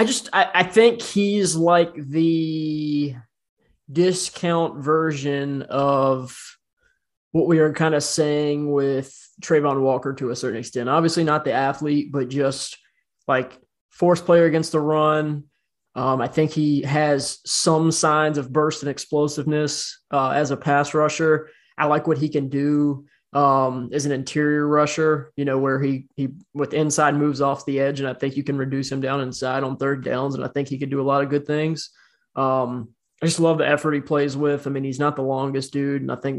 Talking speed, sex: 190 wpm, male